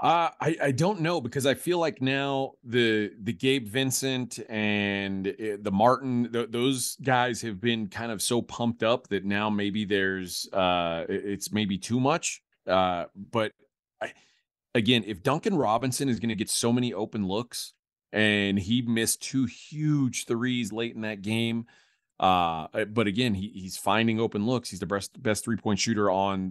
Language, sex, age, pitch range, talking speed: English, male, 30-49, 100-120 Hz, 170 wpm